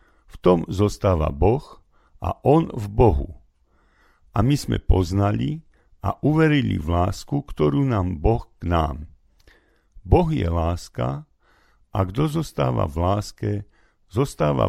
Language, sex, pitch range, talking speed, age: Slovak, male, 85-115 Hz, 125 wpm, 50-69